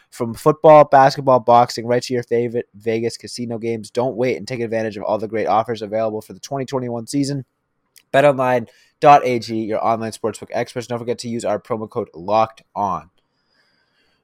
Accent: American